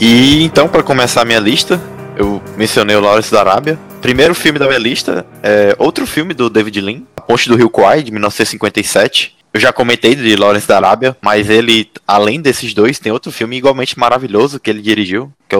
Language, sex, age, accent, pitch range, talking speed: Portuguese, male, 20-39, Brazilian, 105-125 Hz, 200 wpm